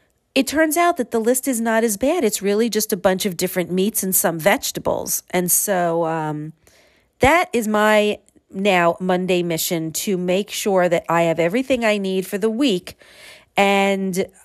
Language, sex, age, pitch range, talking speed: English, female, 40-59, 170-225 Hz, 180 wpm